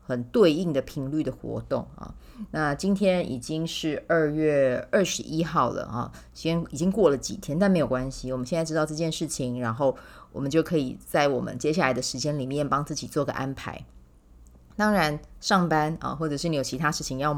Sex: female